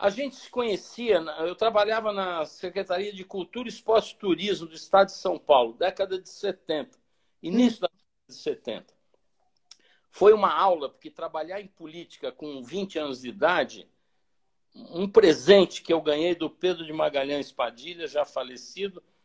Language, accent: Portuguese, Brazilian